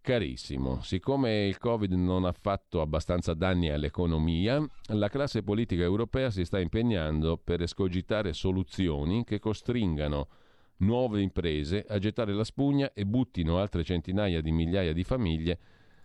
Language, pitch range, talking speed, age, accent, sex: Italian, 85-110 Hz, 135 wpm, 40-59, native, male